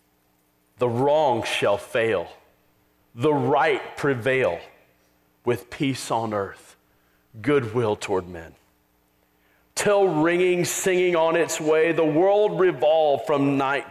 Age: 40-59